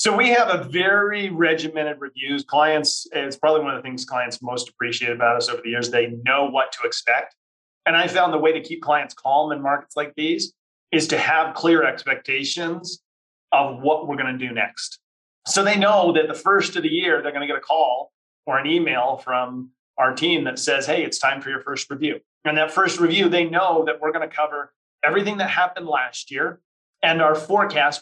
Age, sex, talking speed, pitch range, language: 30-49, male, 215 wpm, 135-170 Hz, English